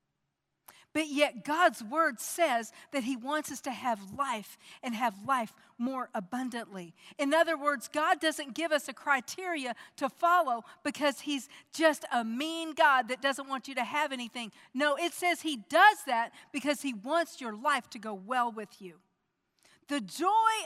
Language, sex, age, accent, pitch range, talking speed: English, female, 50-69, American, 260-345 Hz, 170 wpm